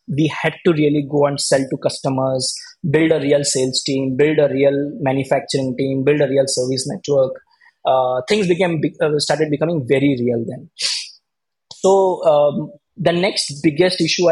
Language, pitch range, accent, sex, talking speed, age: English, 140-180 Hz, Indian, male, 160 wpm, 20-39